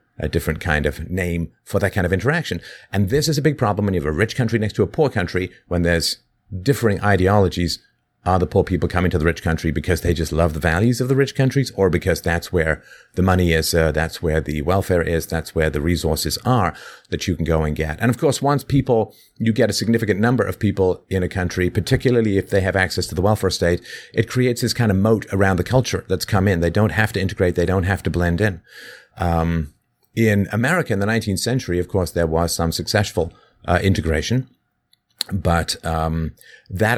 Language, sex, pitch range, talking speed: English, male, 85-110 Hz, 225 wpm